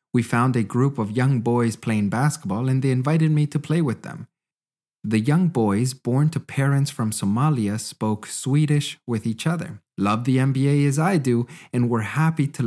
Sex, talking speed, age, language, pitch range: male, 190 wpm, 30-49, English, 105-150 Hz